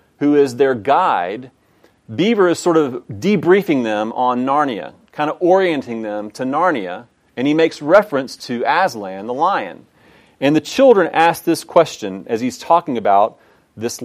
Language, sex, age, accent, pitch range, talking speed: English, male, 40-59, American, 130-185 Hz, 160 wpm